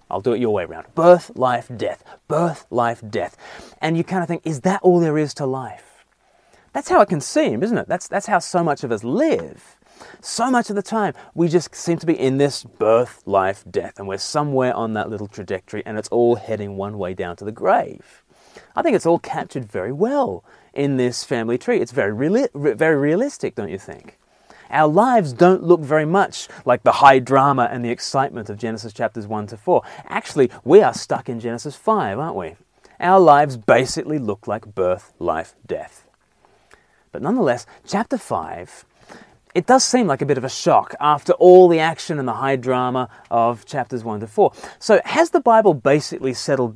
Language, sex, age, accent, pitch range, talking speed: English, male, 30-49, Australian, 115-165 Hz, 200 wpm